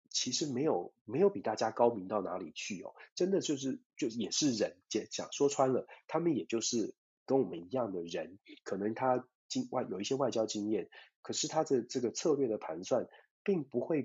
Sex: male